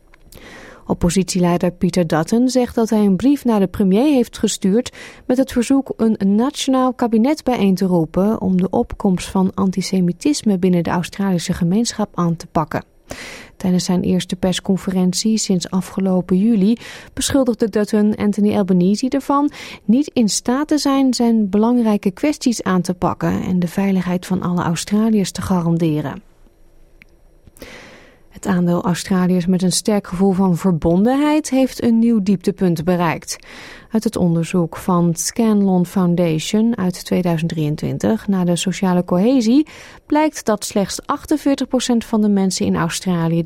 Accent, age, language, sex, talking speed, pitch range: Dutch, 30-49, Dutch, female, 140 wpm, 180-235 Hz